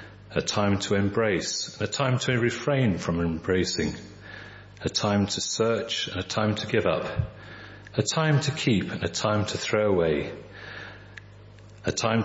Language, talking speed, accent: English, 155 wpm, British